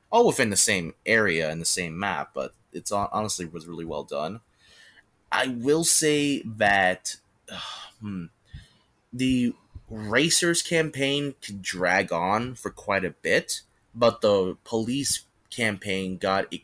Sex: male